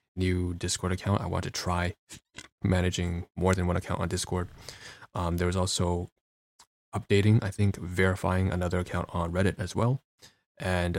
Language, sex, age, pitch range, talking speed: English, male, 20-39, 85-95 Hz, 160 wpm